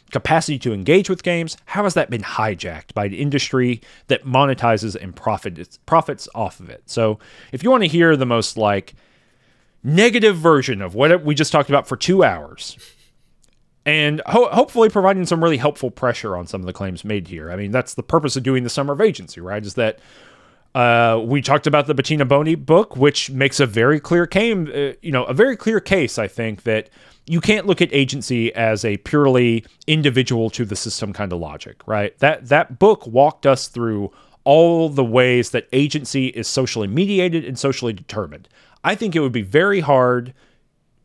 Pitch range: 115-160 Hz